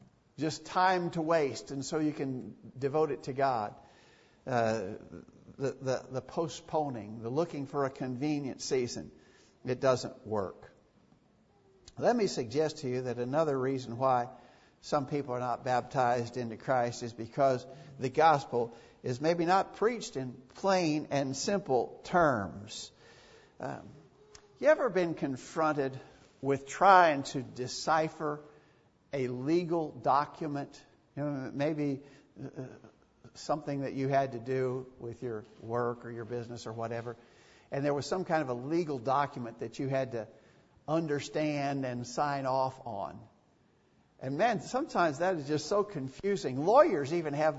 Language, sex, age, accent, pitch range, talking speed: English, male, 60-79, American, 125-155 Hz, 140 wpm